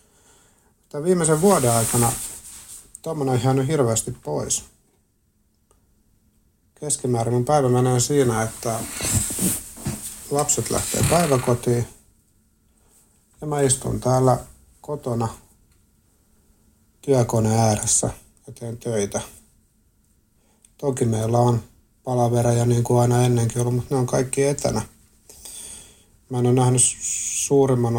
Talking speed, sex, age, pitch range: 100 wpm, male, 60-79, 110-125 Hz